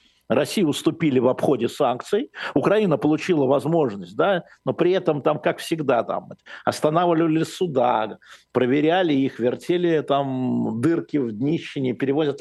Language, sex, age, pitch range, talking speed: Russian, male, 50-69, 135-185 Hz, 125 wpm